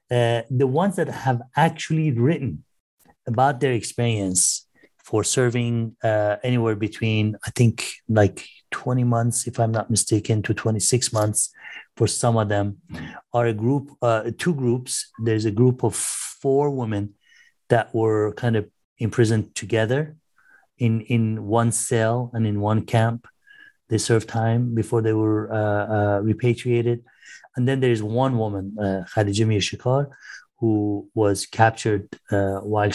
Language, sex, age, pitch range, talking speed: English, male, 30-49, 105-120 Hz, 150 wpm